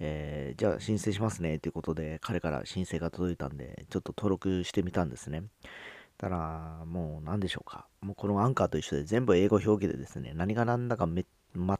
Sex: male